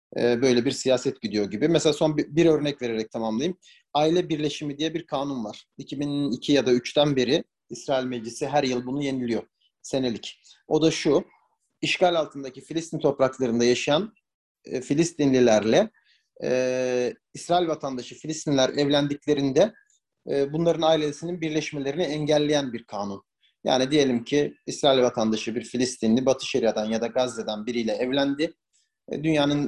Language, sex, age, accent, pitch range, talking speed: Turkish, male, 40-59, native, 125-155 Hz, 130 wpm